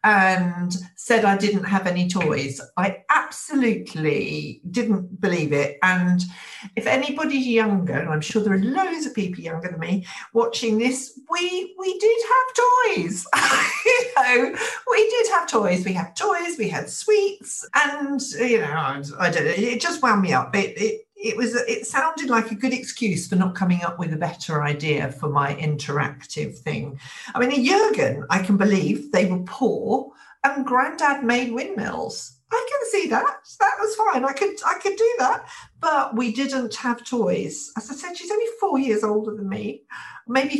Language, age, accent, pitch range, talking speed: English, 50-69, British, 175-270 Hz, 180 wpm